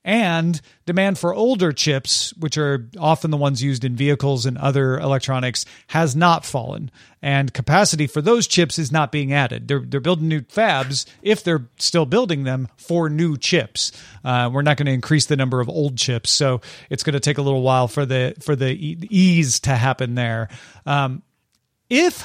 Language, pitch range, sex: English, 130-165 Hz, male